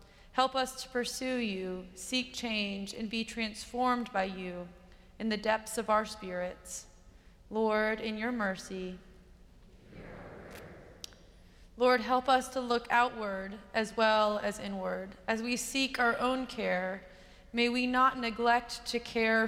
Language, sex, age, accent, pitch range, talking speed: English, female, 20-39, American, 195-235 Hz, 135 wpm